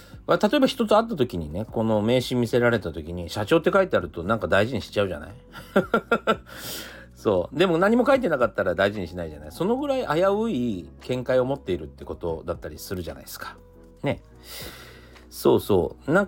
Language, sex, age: Japanese, male, 40-59